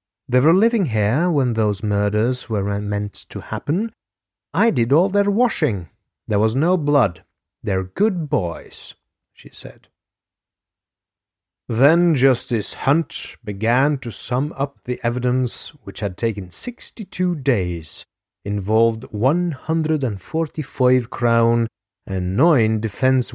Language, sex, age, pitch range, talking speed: English, male, 30-49, 100-150 Hz, 125 wpm